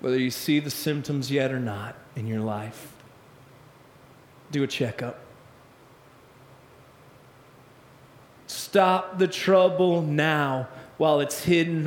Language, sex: English, male